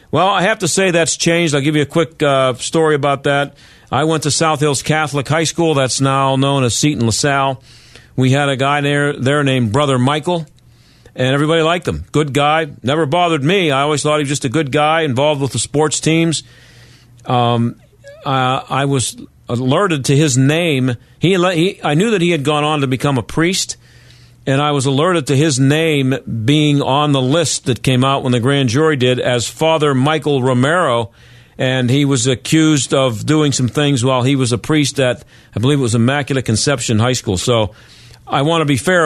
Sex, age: male, 50-69